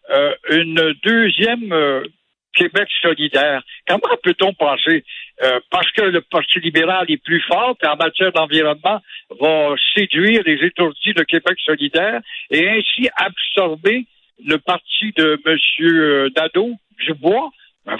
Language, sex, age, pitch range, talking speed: French, male, 60-79, 155-215 Hz, 130 wpm